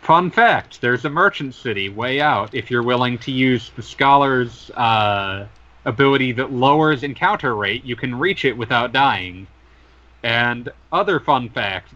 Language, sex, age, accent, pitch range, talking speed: English, male, 30-49, American, 105-180 Hz, 155 wpm